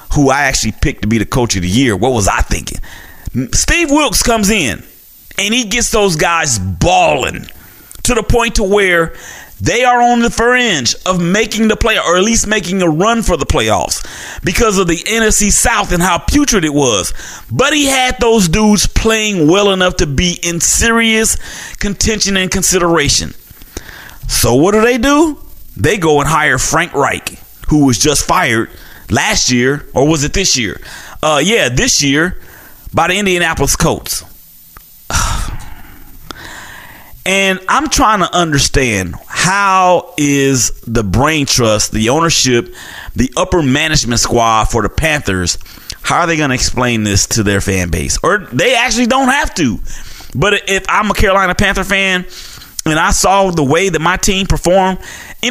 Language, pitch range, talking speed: English, 130-210 Hz, 170 wpm